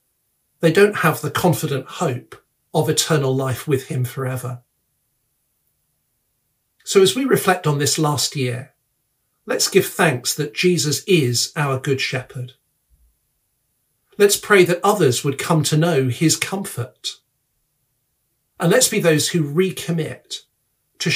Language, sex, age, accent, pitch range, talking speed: English, male, 50-69, British, 130-170 Hz, 130 wpm